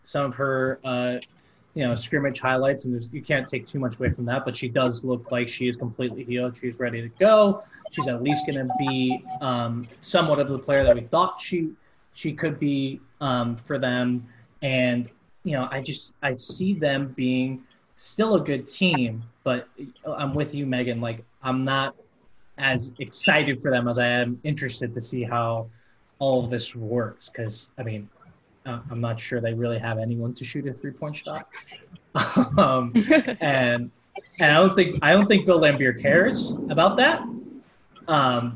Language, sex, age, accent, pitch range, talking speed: English, male, 20-39, American, 125-150 Hz, 185 wpm